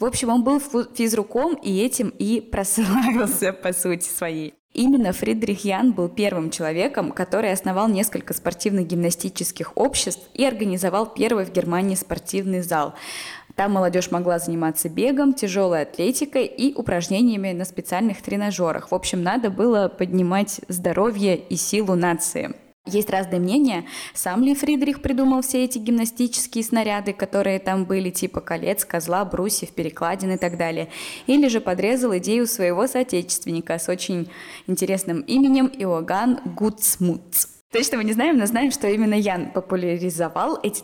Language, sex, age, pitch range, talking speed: Russian, female, 20-39, 180-245 Hz, 145 wpm